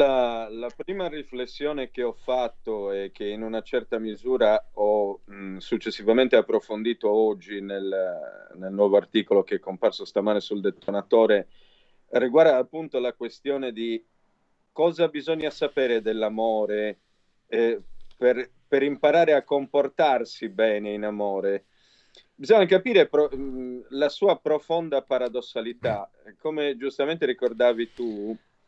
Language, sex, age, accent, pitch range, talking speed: Italian, male, 40-59, native, 115-160 Hz, 120 wpm